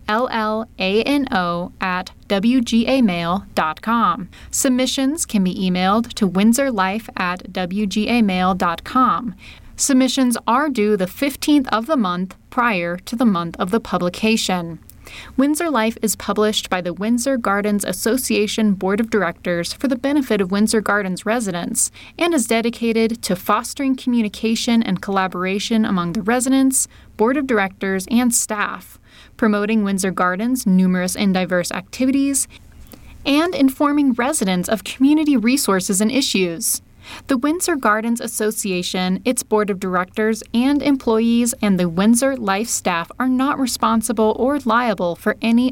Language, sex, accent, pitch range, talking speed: English, female, American, 190-255 Hz, 130 wpm